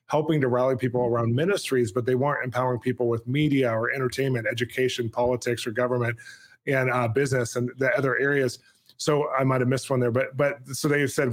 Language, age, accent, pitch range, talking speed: English, 20-39, American, 120-135 Hz, 195 wpm